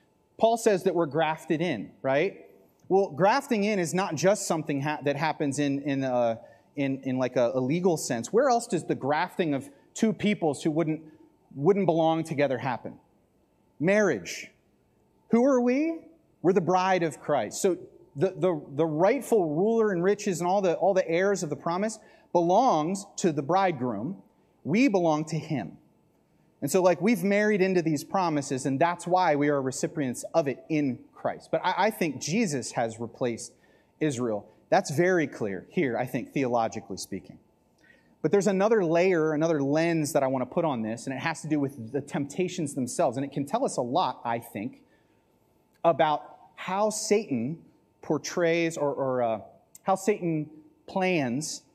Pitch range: 145-190 Hz